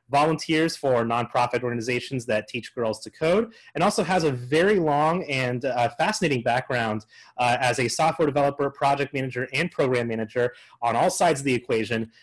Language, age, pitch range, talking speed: English, 30-49, 115-155 Hz, 170 wpm